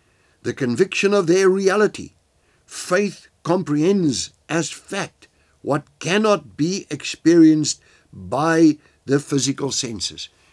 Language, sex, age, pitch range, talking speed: English, male, 60-79, 85-125 Hz, 95 wpm